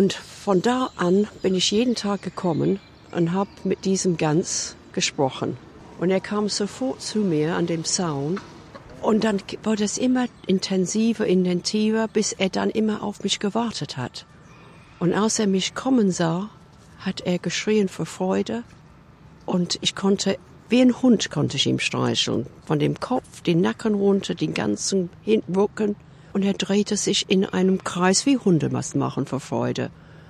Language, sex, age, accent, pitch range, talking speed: German, female, 60-79, German, 160-205 Hz, 160 wpm